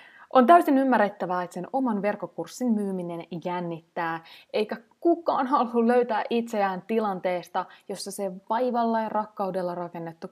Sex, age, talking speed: female, 20-39, 120 wpm